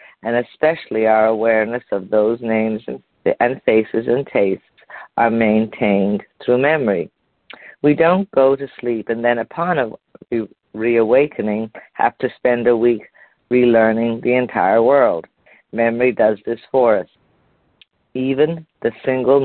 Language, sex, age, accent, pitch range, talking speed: English, female, 50-69, American, 110-125 Hz, 125 wpm